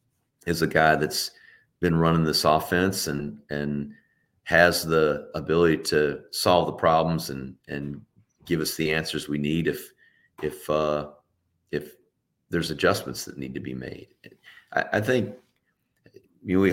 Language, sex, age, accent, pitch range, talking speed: English, male, 40-59, American, 70-85 Hz, 150 wpm